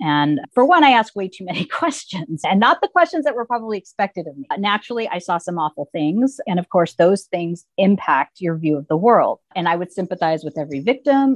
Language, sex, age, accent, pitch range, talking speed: English, female, 30-49, American, 165-215 Hz, 225 wpm